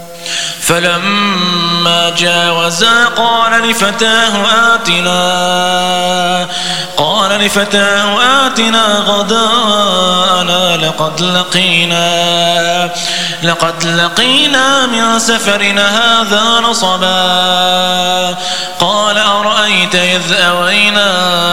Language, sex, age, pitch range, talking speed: English, male, 20-39, 175-210 Hz, 60 wpm